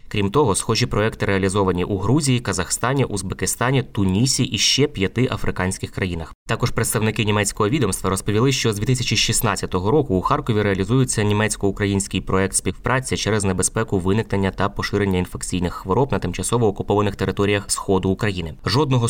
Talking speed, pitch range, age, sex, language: 140 wpm, 95-120 Hz, 20-39, male, Ukrainian